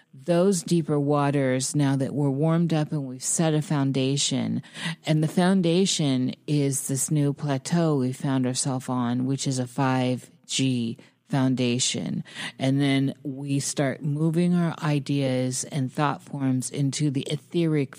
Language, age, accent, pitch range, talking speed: English, 50-69, American, 130-155 Hz, 140 wpm